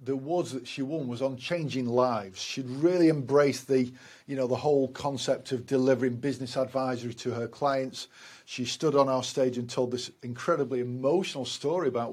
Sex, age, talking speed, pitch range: male, 40-59, 185 wpm, 130-165 Hz